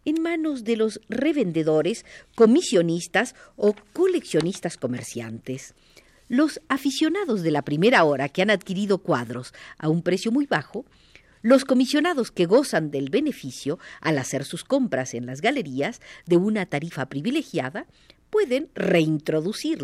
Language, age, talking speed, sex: Spanish, 50-69, 130 wpm, female